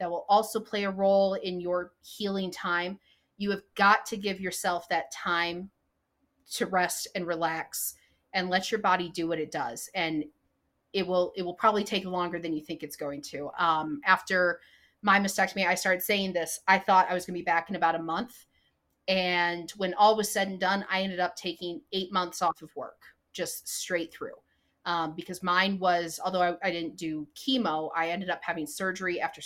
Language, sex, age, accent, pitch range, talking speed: English, female, 30-49, American, 170-200 Hz, 200 wpm